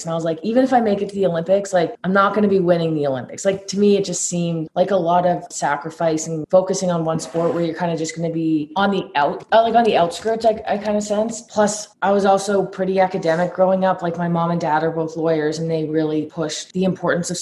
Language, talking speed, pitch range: English, 270 wpm, 165-190 Hz